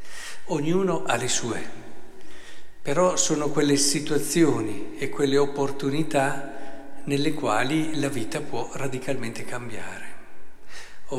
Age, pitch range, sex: 50-69, 125-160 Hz, male